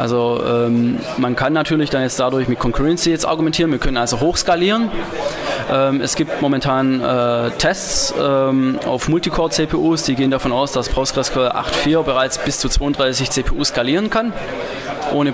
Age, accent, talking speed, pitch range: 20-39, German, 165 wpm, 130-155 Hz